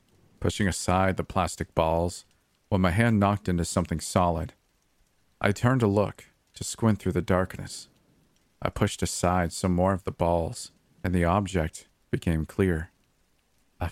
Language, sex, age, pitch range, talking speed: English, male, 40-59, 90-110 Hz, 155 wpm